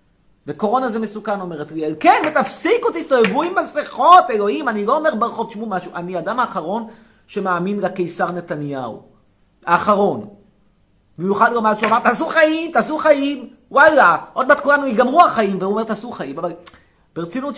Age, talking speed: 30-49, 155 wpm